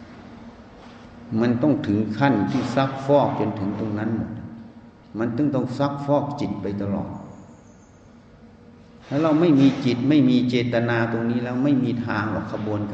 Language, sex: Thai, male